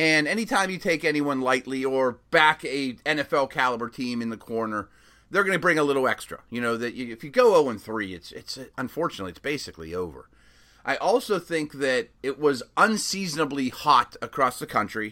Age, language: 30-49, English